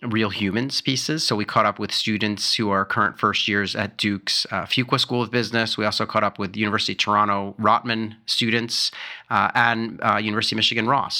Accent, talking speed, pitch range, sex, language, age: American, 205 wpm, 100-115 Hz, male, English, 30-49